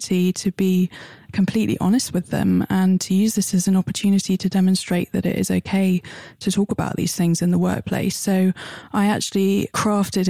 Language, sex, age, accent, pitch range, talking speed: English, female, 20-39, British, 180-200 Hz, 180 wpm